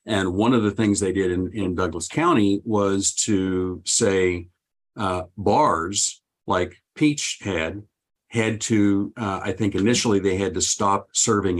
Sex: male